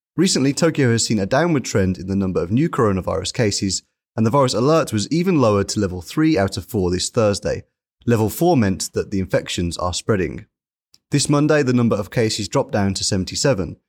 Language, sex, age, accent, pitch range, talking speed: English, male, 30-49, British, 95-145 Hz, 205 wpm